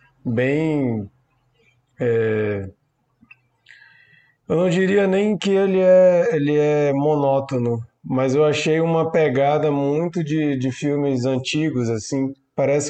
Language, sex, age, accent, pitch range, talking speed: Portuguese, male, 20-39, Brazilian, 135-160 Hz, 110 wpm